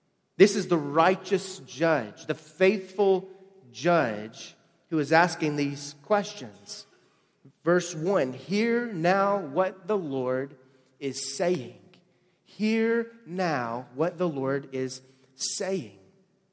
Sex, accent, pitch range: male, American, 135-180 Hz